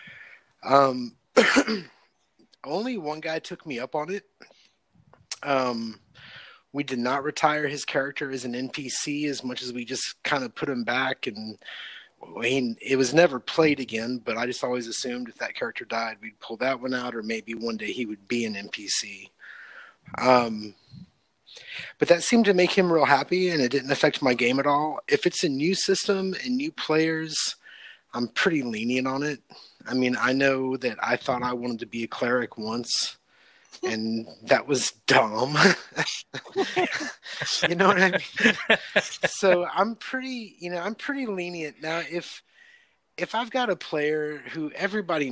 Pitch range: 120-175 Hz